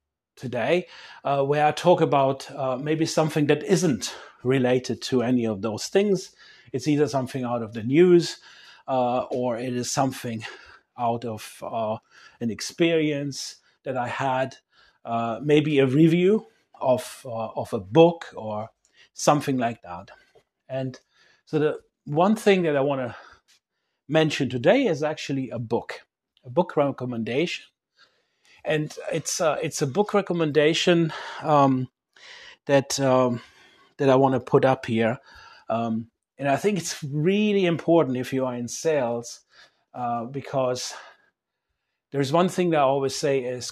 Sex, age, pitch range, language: male, 30-49, 125-160 Hz, English